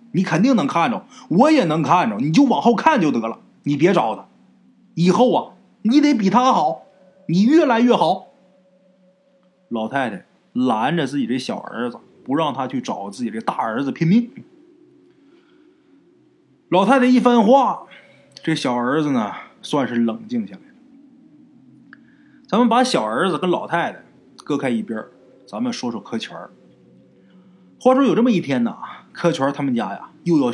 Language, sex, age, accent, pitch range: Chinese, male, 20-39, native, 180-255 Hz